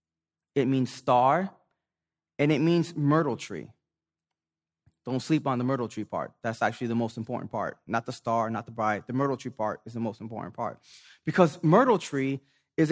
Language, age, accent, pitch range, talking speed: English, 20-39, American, 120-170 Hz, 185 wpm